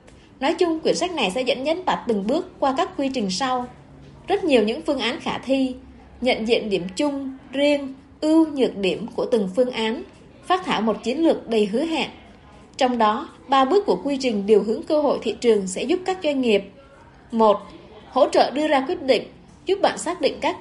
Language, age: Vietnamese, 20-39